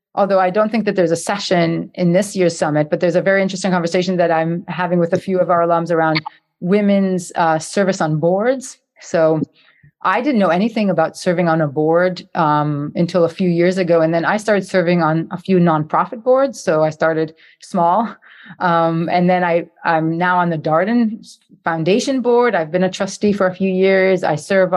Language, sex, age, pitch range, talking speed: English, female, 30-49, 165-195 Hz, 200 wpm